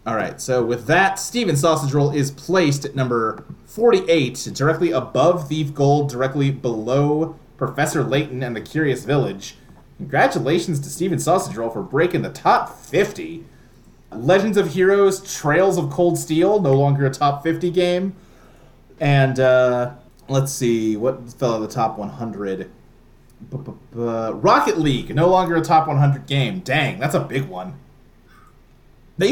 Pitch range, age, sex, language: 130-175 Hz, 30-49, male, English